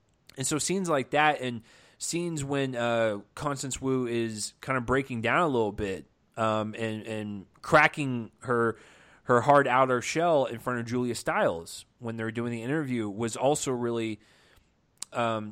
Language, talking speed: English, 160 wpm